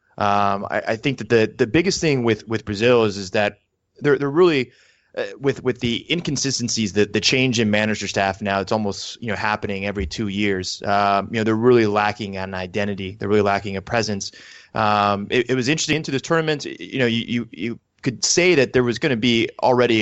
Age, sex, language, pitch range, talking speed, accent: 20-39, male, English, 100-120 Hz, 220 wpm, American